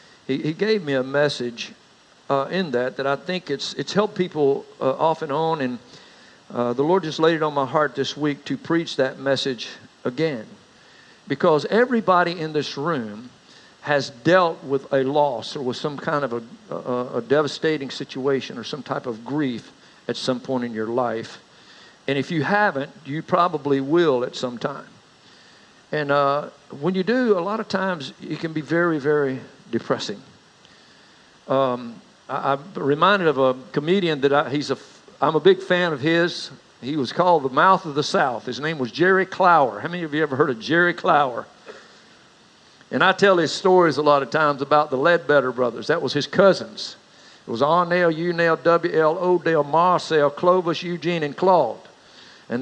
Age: 50-69